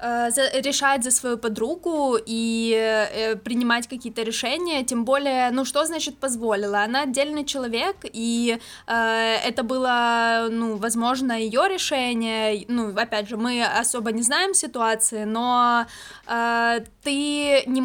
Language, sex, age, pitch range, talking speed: Ukrainian, female, 10-29, 225-260 Hz, 125 wpm